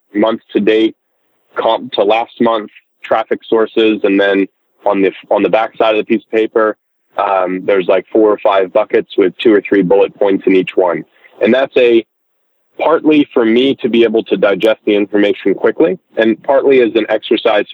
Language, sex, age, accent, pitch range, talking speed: English, male, 30-49, American, 105-130 Hz, 195 wpm